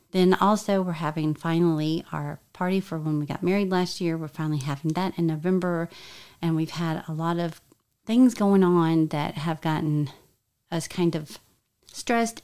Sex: female